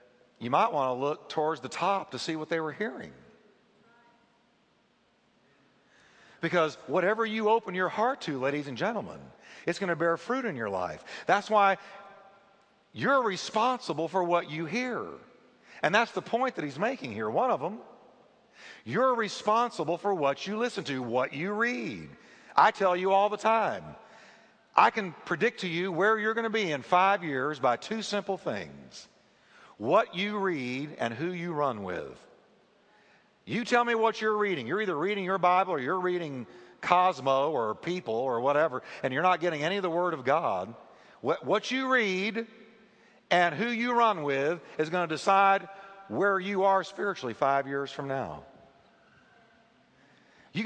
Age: 50-69